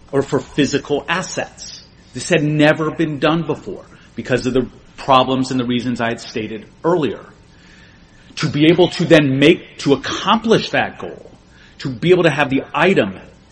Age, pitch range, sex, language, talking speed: 40-59, 125-160 Hz, male, English, 170 wpm